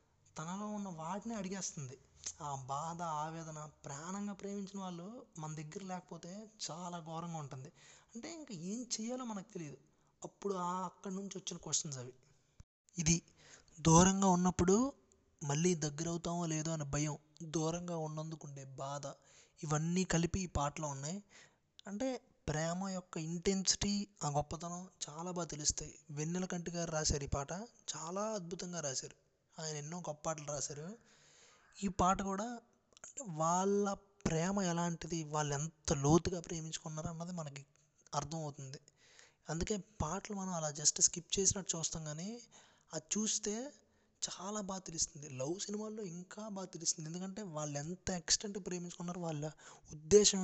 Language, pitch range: Telugu, 155-195 Hz